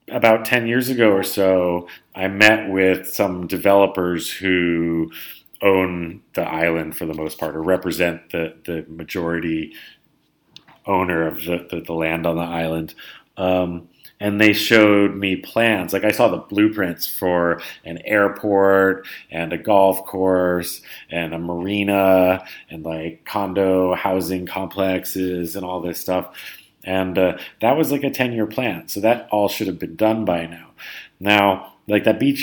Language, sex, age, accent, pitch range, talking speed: English, male, 30-49, American, 85-105 Hz, 155 wpm